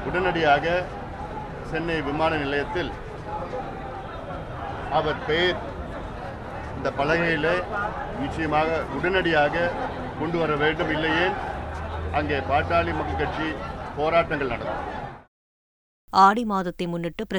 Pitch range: 170-205 Hz